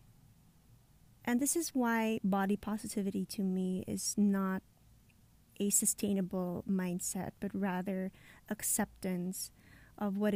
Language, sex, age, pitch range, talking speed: English, female, 20-39, 180-205 Hz, 105 wpm